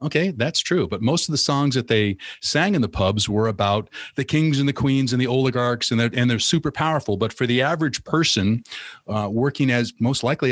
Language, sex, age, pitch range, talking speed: English, male, 40-59, 105-130 Hz, 220 wpm